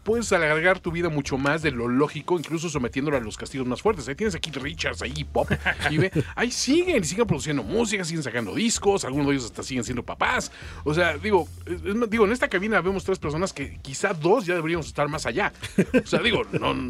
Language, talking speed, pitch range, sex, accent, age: Spanish, 225 wpm, 120-175 Hz, male, Mexican, 40-59